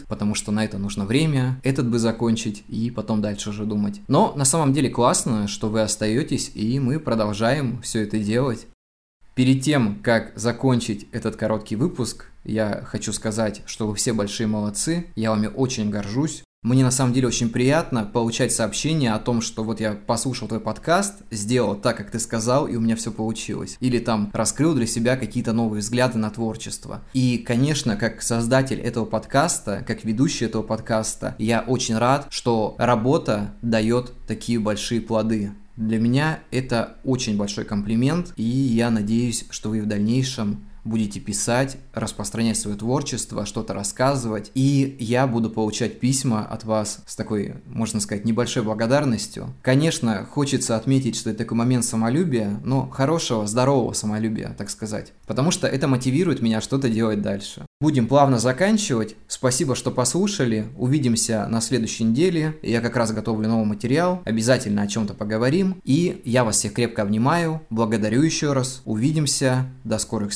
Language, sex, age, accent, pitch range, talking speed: Russian, male, 20-39, native, 110-130 Hz, 160 wpm